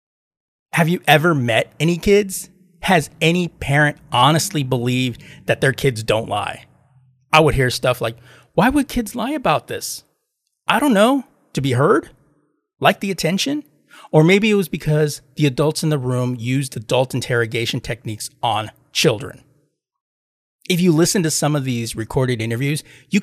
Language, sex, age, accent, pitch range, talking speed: English, male, 30-49, American, 130-170 Hz, 160 wpm